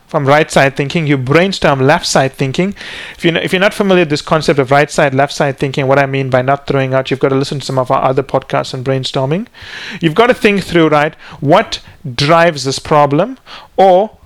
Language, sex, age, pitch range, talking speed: English, male, 30-49, 140-180 Hz, 205 wpm